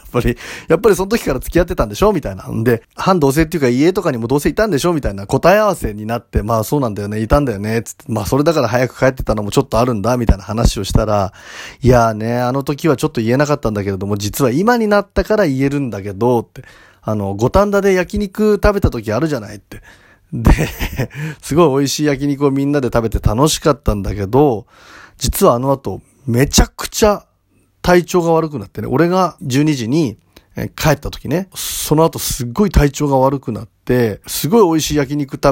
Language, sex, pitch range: Japanese, male, 110-155 Hz